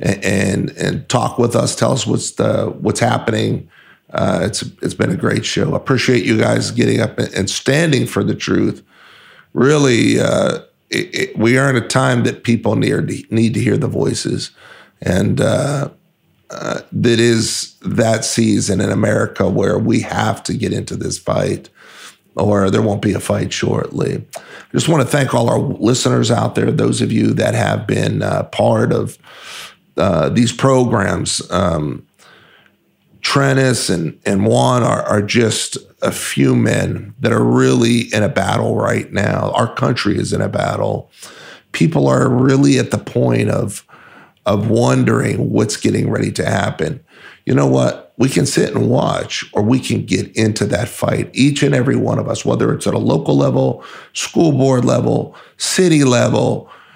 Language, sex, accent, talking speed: English, male, American, 175 wpm